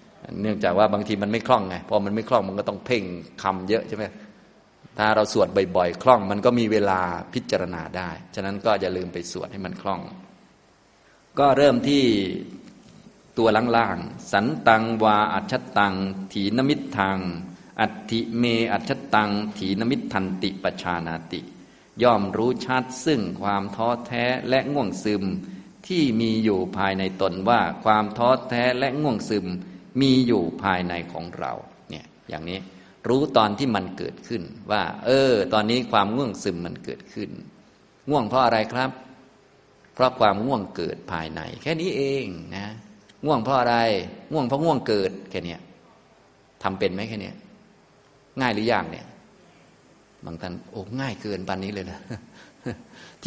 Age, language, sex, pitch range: 20-39, Thai, male, 95-125 Hz